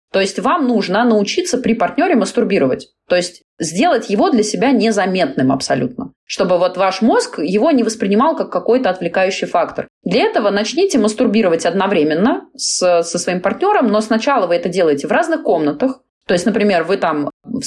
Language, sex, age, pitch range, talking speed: Russian, female, 20-39, 180-245 Hz, 170 wpm